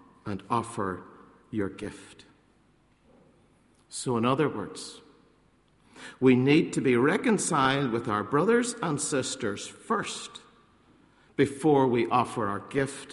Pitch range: 110-145 Hz